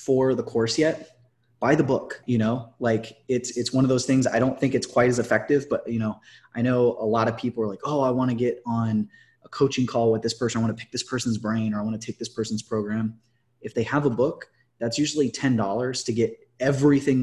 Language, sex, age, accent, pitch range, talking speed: English, male, 20-39, American, 115-130 Hz, 250 wpm